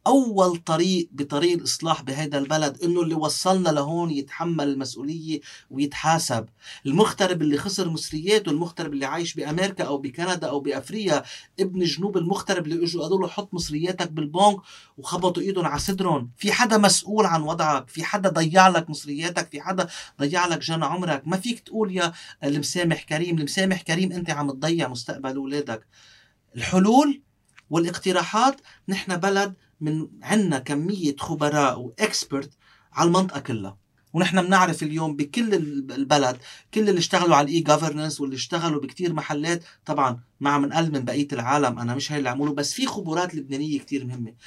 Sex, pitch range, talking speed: male, 145-185 Hz, 150 wpm